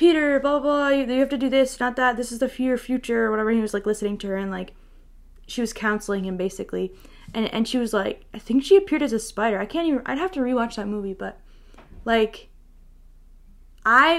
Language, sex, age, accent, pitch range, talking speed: English, female, 10-29, American, 220-295 Hz, 235 wpm